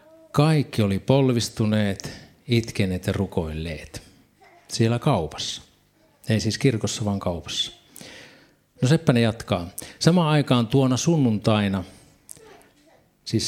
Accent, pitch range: native, 100-130 Hz